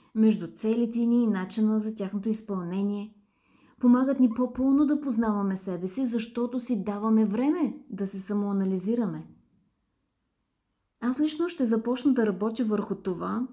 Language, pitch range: Bulgarian, 200-255 Hz